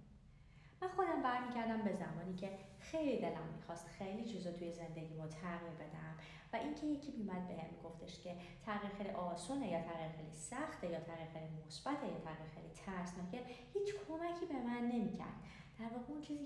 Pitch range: 170-240 Hz